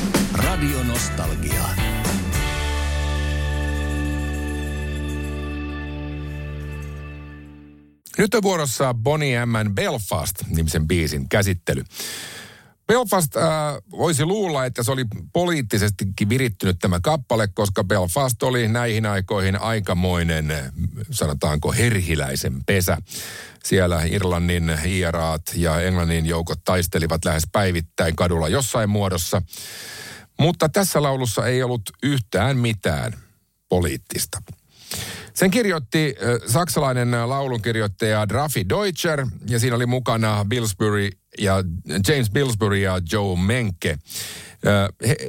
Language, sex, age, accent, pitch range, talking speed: Finnish, male, 50-69, native, 85-120 Hz, 85 wpm